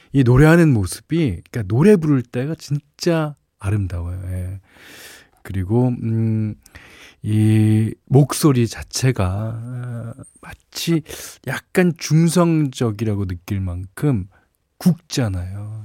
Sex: male